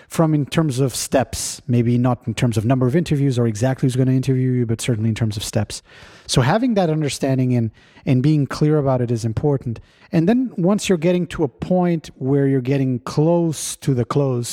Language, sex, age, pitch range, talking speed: English, male, 30-49, 125-155 Hz, 220 wpm